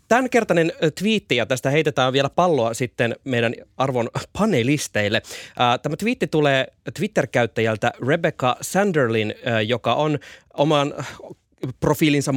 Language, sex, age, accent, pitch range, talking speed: Finnish, male, 20-39, native, 115-155 Hz, 100 wpm